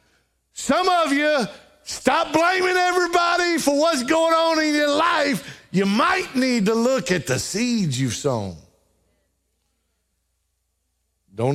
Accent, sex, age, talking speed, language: American, male, 50-69, 125 wpm, English